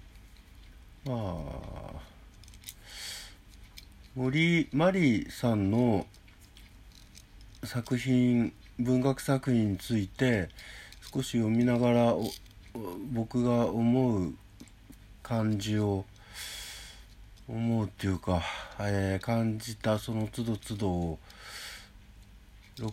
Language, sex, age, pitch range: Japanese, male, 50-69, 95-125 Hz